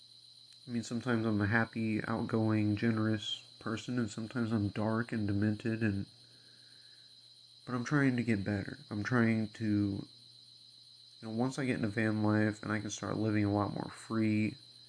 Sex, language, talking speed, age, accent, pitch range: male, English, 170 wpm, 30-49, American, 110-120 Hz